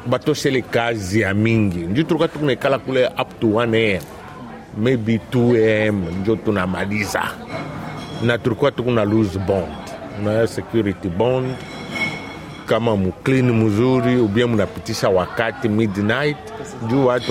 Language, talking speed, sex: Swahili, 95 wpm, male